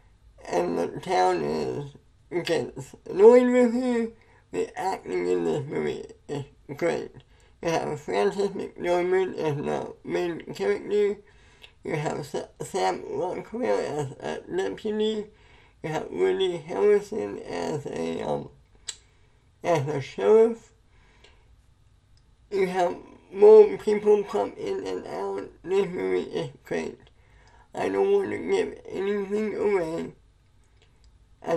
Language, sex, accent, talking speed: English, male, American, 115 wpm